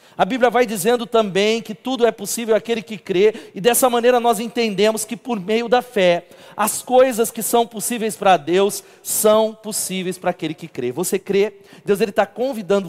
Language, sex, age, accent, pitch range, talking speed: Portuguese, male, 40-59, Brazilian, 175-220 Hz, 185 wpm